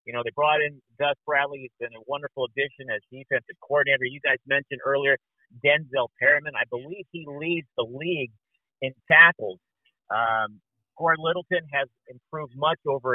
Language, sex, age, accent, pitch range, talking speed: English, male, 50-69, American, 130-165 Hz, 165 wpm